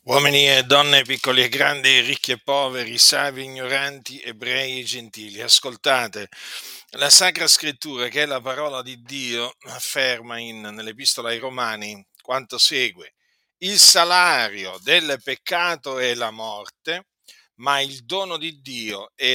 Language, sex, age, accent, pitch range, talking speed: Italian, male, 50-69, native, 125-165 Hz, 135 wpm